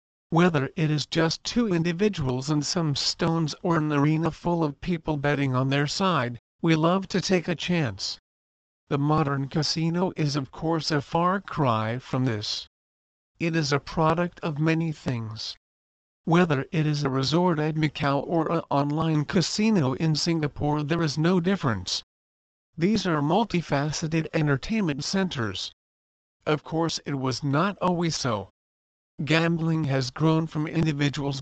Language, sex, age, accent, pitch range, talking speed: English, male, 50-69, American, 130-170 Hz, 145 wpm